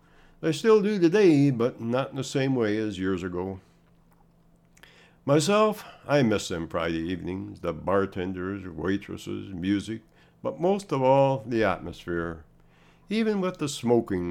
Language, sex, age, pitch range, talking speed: English, male, 60-79, 95-135 Hz, 140 wpm